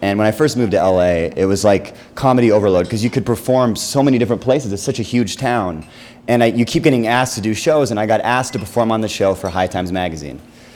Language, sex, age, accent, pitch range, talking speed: English, male, 30-49, American, 100-125 Hz, 260 wpm